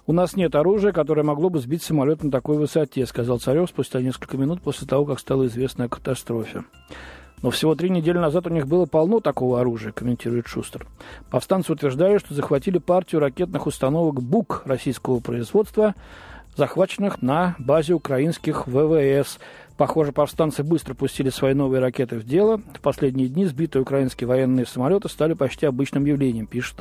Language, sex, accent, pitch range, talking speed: Russian, male, native, 125-160 Hz, 160 wpm